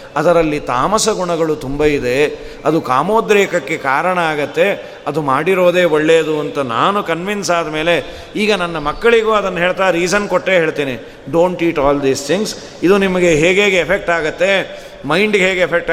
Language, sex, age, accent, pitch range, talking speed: Kannada, male, 40-59, native, 150-195 Hz, 145 wpm